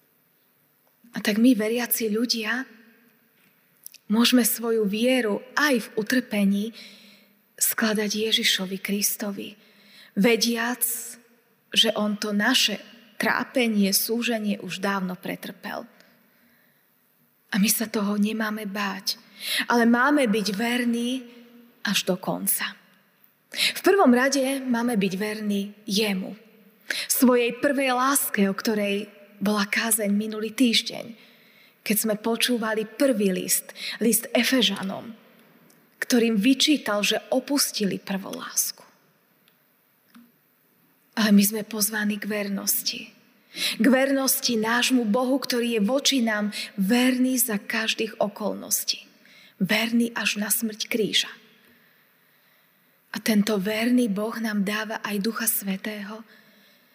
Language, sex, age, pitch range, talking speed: Slovak, female, 20-39, 210-240 Hz, 105 wpm